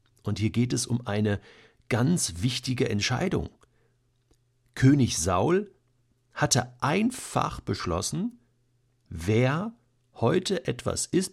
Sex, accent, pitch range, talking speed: male, German, 110-135 Hz, 95 wpm